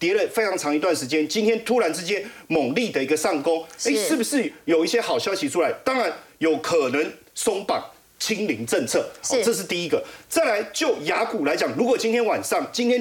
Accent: native